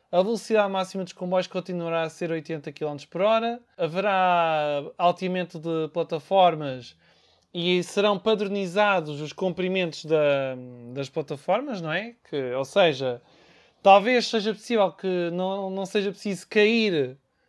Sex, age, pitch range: male, 20-39, 170-225 Hz